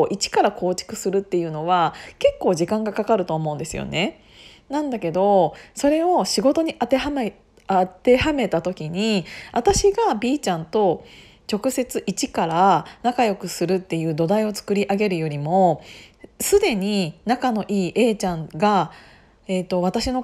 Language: Japanese